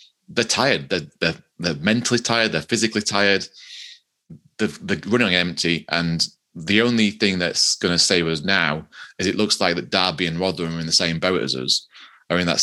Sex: male